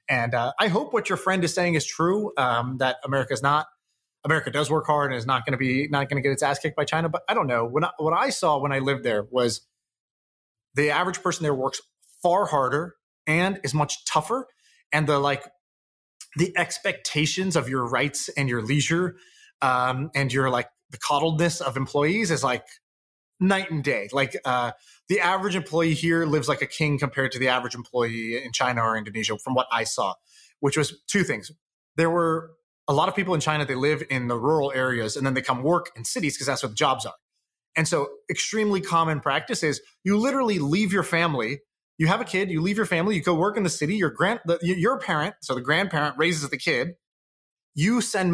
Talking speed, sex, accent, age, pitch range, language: 215 wpm, male, American, 20-39, 135-175 Hz, English